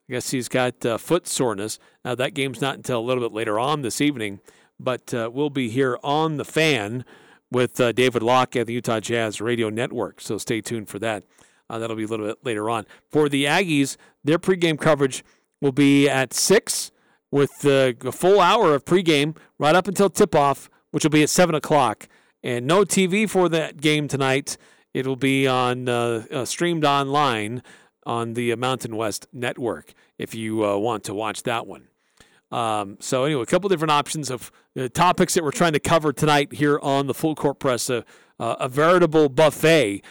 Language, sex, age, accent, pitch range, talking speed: English, male, 40-59, American, 120-155 Hz, 195 wpm